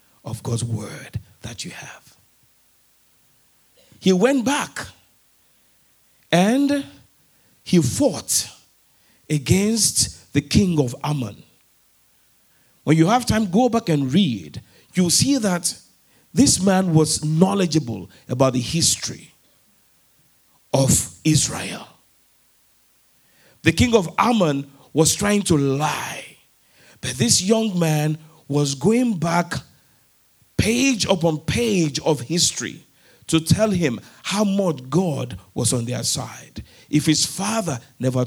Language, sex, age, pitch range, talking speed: English, male, 50-69, 125-180 Hz, 115 wpm